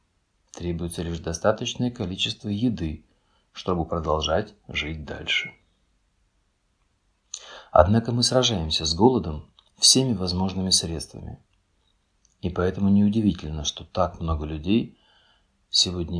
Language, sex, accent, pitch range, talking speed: Russian, male, native, 85-100 Hz, 95 wpm